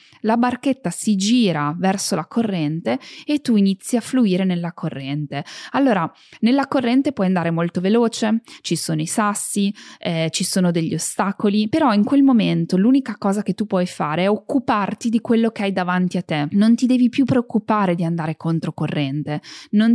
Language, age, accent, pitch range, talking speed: Italian, 20-39, native, 175-240 Hz, 175 wpm